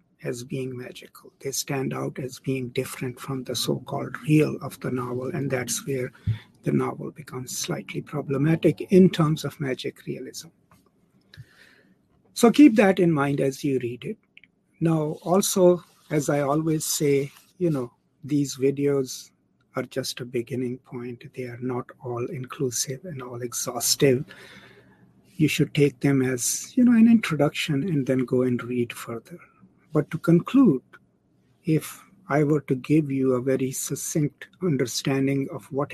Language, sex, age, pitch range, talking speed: English, male, 60-79, 125-155 Hz, 150 wpm